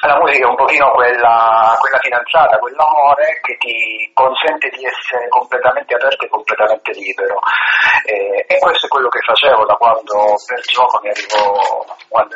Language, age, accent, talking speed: Italian, 40-59, native, 160 wpm